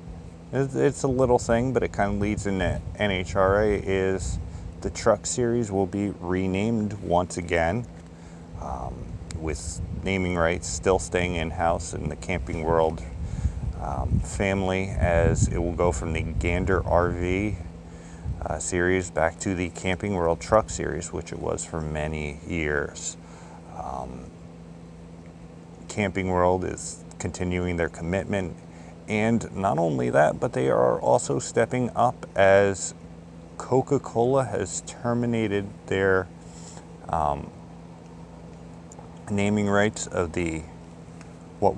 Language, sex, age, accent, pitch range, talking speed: English, male, 30-49, American, 85-95 Hz, 120 wpm